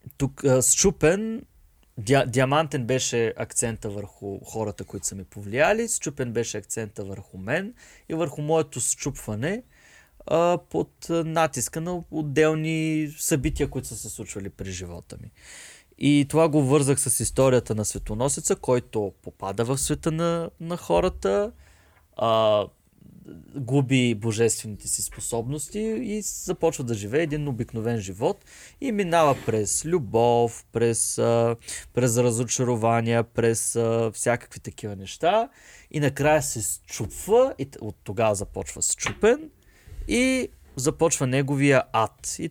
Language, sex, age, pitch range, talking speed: Bulgarian, male, 30-49, 110-155 Hz, 120 wpm